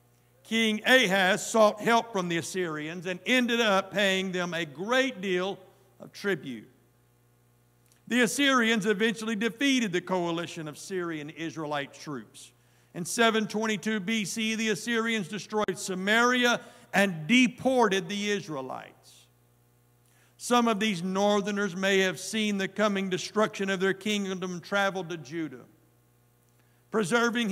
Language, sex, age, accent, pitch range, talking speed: English, male, 60-79, American, 155-220 Hz, 120 wpm